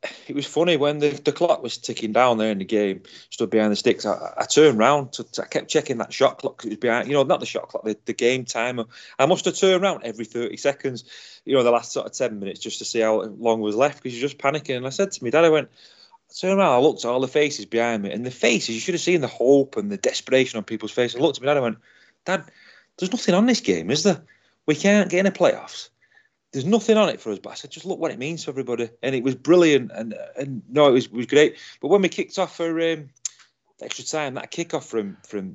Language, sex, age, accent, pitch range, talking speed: English, male, 30-49, British, 115-160 Hz, 280 wpm